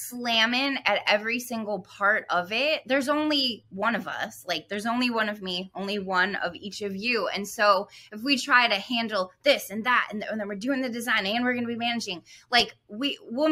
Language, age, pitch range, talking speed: English, 20-39, 200-255 Hz, 220 wpm